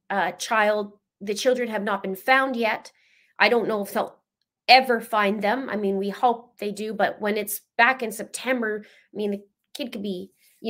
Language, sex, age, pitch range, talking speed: English, female, 20-39, 190-235 Hz, 200 wpm